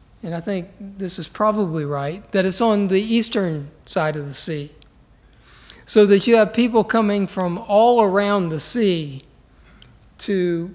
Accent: American